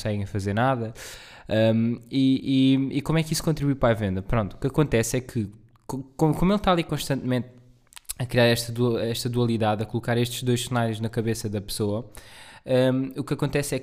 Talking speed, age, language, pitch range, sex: 180 wpm, 20-39, Portuguese, 115-140 Hz, male